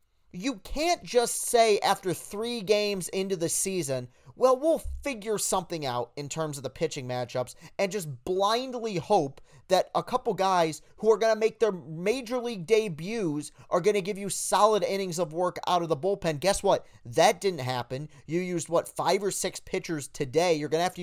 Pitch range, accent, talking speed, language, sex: 130-190 Hz, American, 195 wpm, English, male